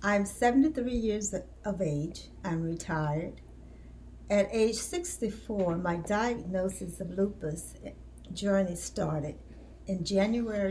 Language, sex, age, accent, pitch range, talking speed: English, female, 60-79, American, 160-225 Hz, 100 wpm